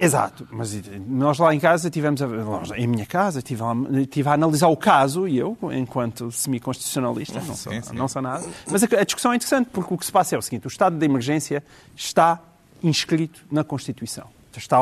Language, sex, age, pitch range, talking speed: Portuguese, male, 40-59, 135-220 Hz, 190 wpm